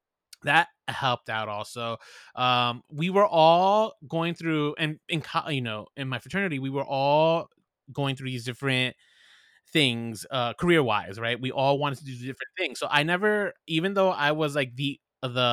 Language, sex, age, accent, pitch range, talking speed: English, male, 20-39, American, 125-170 Hz, 175 wpm